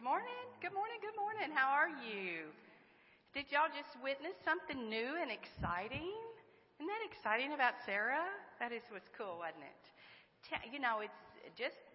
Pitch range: 190-285 Hz